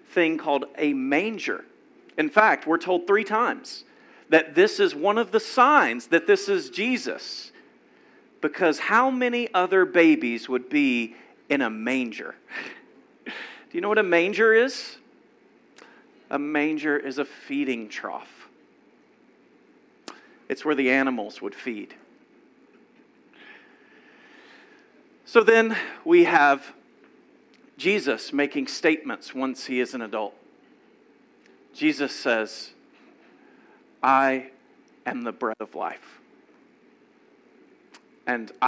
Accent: American